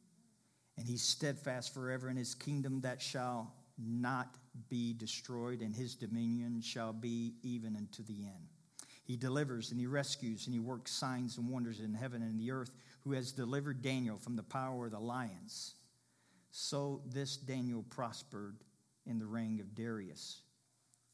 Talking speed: 160 wpm